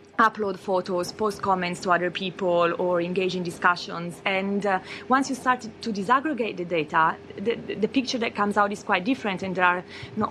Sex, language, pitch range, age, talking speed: female, English, 185-225 Hz, 20-39, 200 wpm